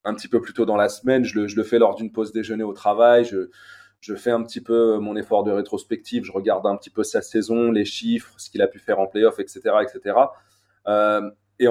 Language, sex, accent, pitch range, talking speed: French, male, French, 110-140 Hz, 255 wpm